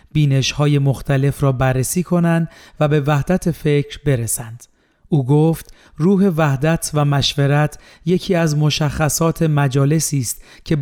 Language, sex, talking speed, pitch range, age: Persian, male, 120 wpm, 140-160 Hz, 40-59